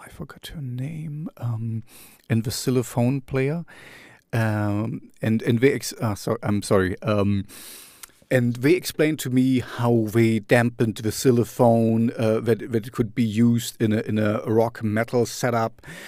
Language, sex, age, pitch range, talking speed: English, male, 40-59, 115-130 Hz, 160 wpm